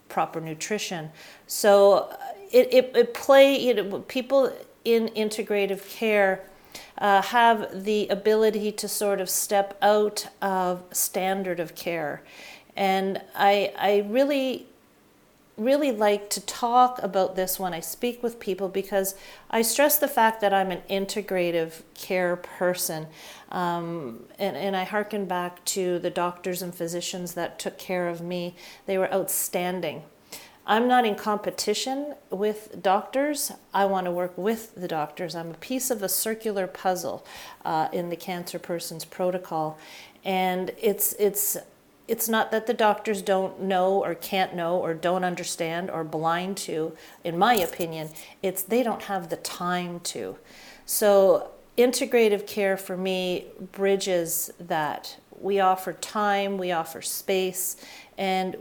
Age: 40-59